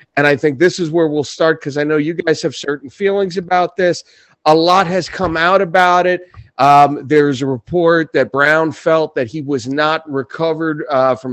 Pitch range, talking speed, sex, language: 145-180 Hz, 205 wpm, male, English